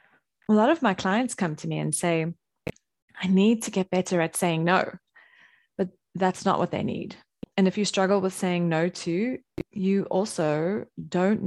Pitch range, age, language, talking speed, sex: 175-230 Hz, 20-39, English, 185 wpm, female